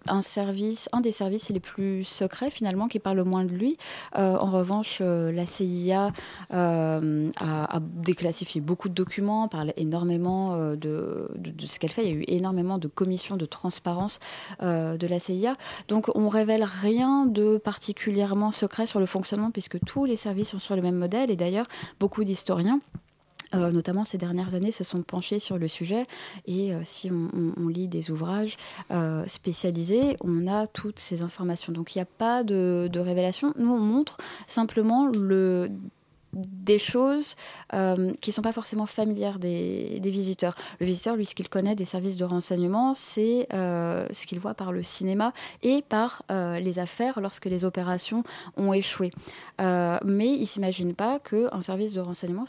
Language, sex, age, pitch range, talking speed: French, female, 20-39, 180-215 Hz, 185 wpm